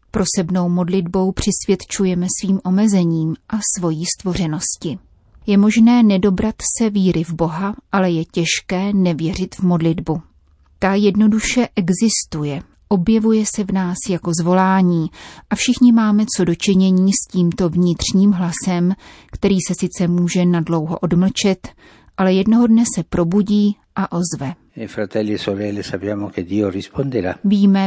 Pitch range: 170-200 Hz